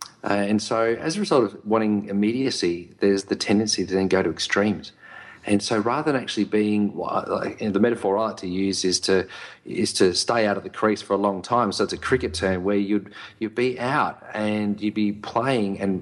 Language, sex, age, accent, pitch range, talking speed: English, male, 40-59, Australian, 95-110 Hz, 225 wpm